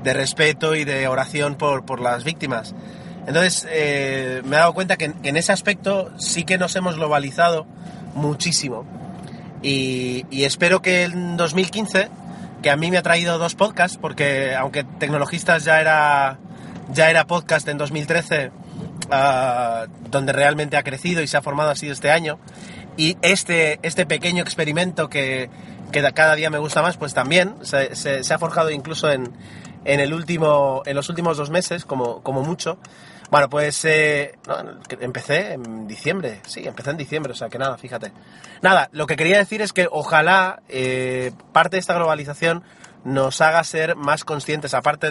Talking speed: 170 wpm